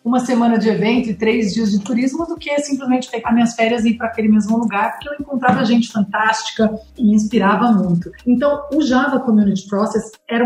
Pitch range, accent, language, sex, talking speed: 220-270 Hz, Brazilian, Portuguese, female, 205 wpm